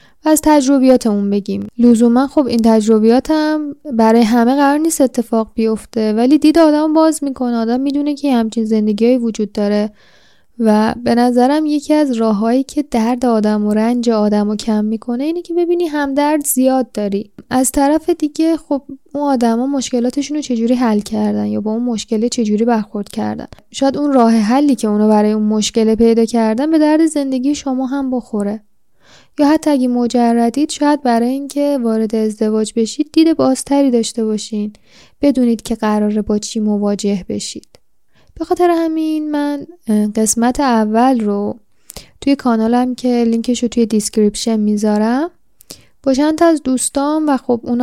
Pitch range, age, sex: 220-285 Hz, 10-29, female